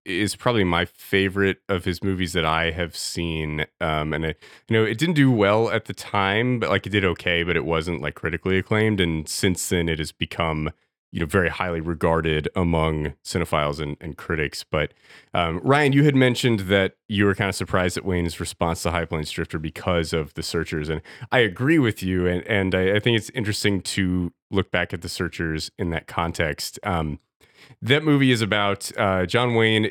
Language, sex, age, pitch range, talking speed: English, male, 30-49, 85-105 Hz, 205 wpm